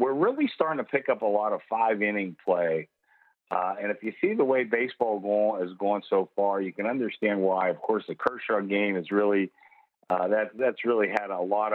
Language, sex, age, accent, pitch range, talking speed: English, male, 50-69, American, 95-130 Hz, 210 wpm